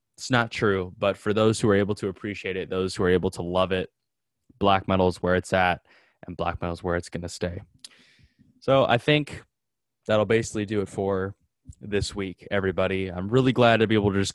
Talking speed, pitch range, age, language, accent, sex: 220 wpm, 90-105 Hz, 10-29, English, American, male